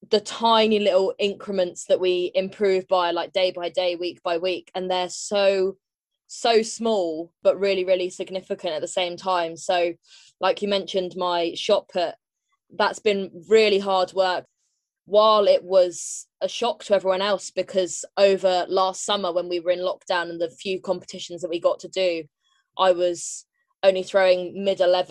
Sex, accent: female, British